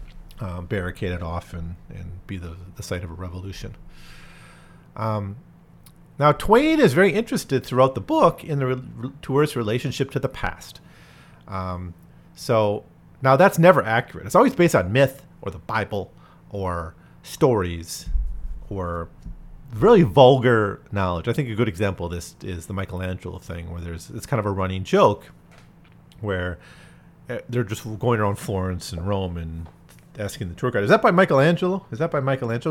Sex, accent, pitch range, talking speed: male, American, 95-150 Hz, 160 wpm